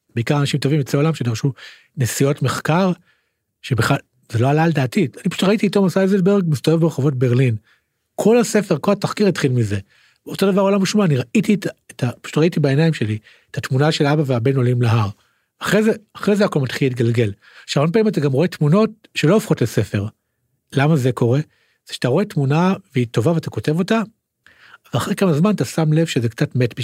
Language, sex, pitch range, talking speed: Hebrew, male, 125-180 Hz, 170 wpm